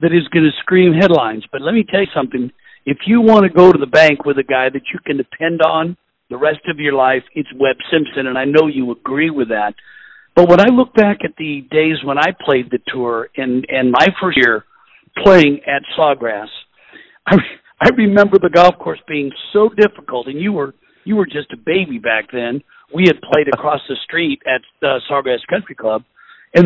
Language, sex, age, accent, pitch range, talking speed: English, male, 60-79, American, 140-185 Hz, 215 wpm